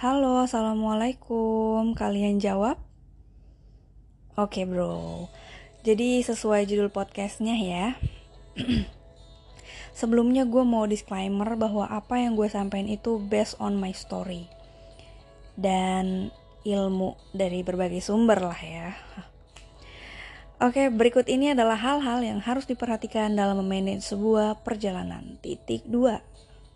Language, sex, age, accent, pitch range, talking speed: Indonesian, female, 20-39, native, 190-235 Hz, 110 wpm